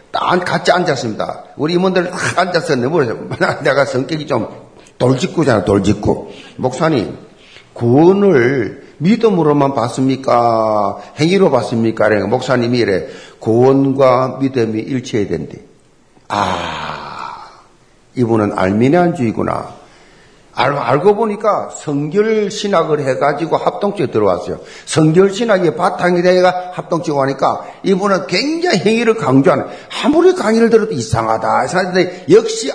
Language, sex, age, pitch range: Korean, male, 50-69, 130-200 Hz